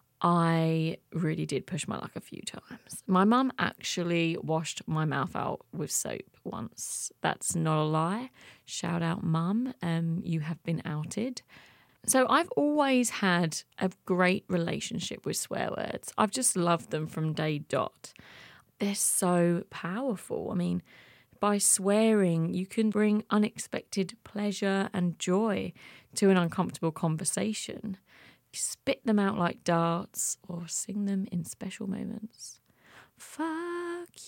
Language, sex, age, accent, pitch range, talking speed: English, female, 30-49, British, 160-210 Hz, 135 wpm